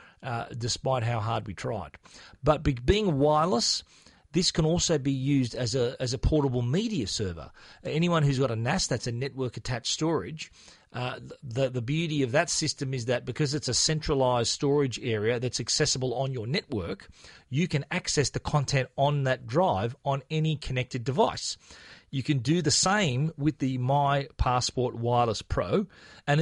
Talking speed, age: 170 wpm, 40-59